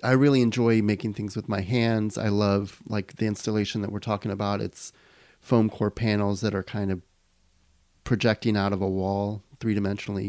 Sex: male